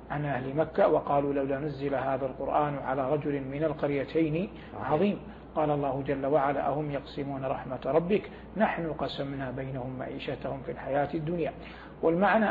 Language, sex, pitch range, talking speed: English, male, 140-165 Hz, 140 wpm